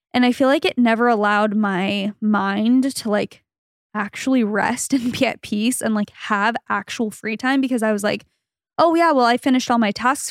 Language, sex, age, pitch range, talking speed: English, female, 10-29, 210-245 Hz, 205 wpm